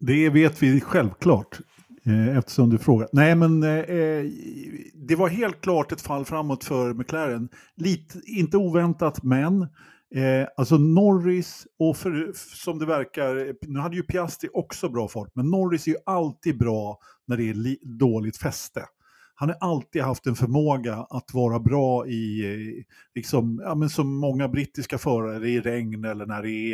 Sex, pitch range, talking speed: male, 115-155 Hz, 165 wpm